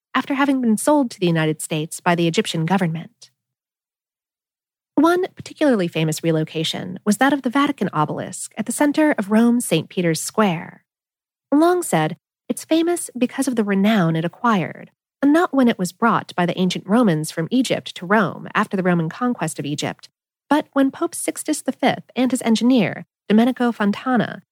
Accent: American